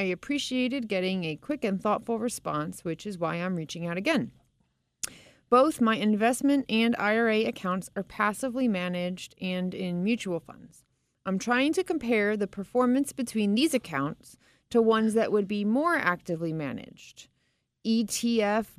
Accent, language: American, English